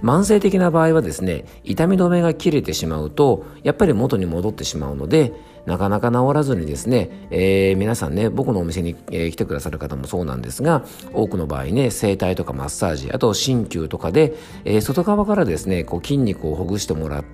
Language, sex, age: Japanese, male, 50-69